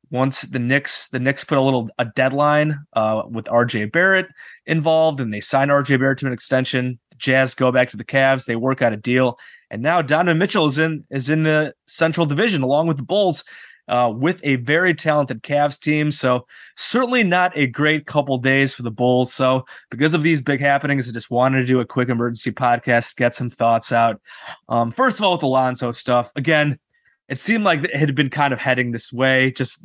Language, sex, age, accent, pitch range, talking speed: English, male, 30-49, American, 125-150 Hz, 215 wpm